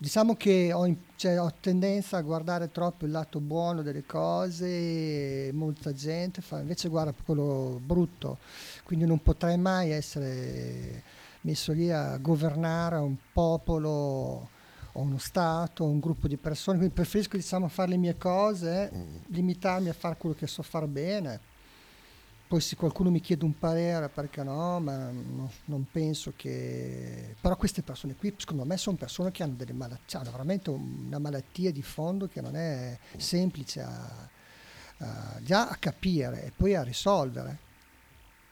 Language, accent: Italian, native